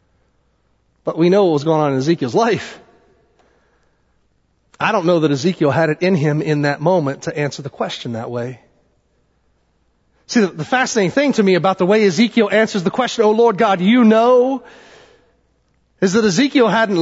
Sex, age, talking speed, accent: male, 30-49, 175 wpm, American